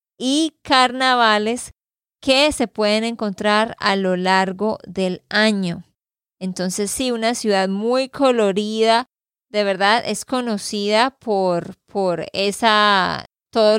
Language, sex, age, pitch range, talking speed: Spanish, female, 20-39, 195-245 Hz, 105 wpm